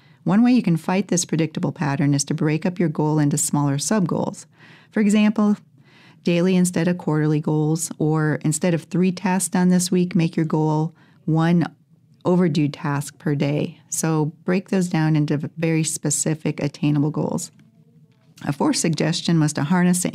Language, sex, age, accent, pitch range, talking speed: English, female, 40-59, American, 150-185 Hz, 165 wpm